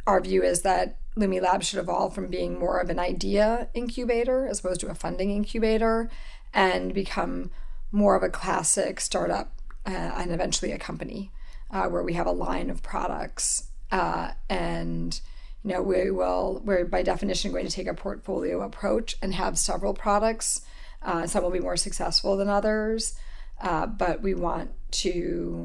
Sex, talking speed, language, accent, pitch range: female, 170 wpm, English, American, 175-215 Hz